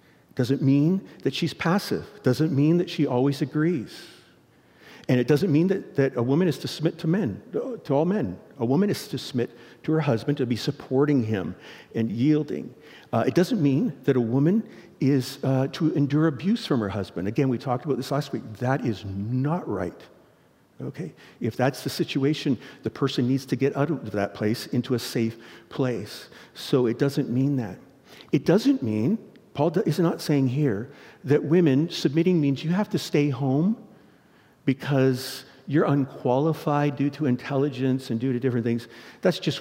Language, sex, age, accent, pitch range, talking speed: English, male, 50-69, American, 120-155 Hz, 180 wpm